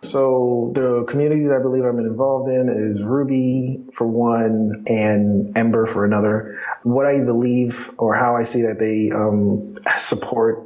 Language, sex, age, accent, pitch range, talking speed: English, male, 30-49, American, 105-120 Hz, 165 wpm